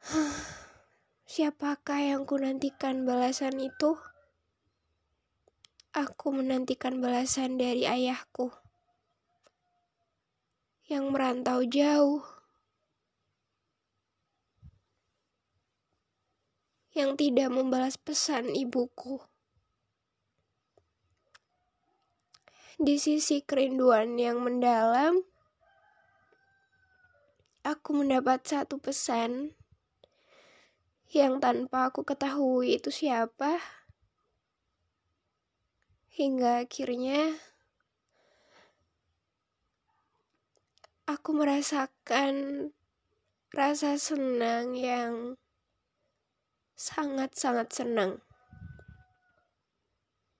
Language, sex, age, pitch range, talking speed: Indonesian, female, 20-39, 250-295 Hz, 50 wpm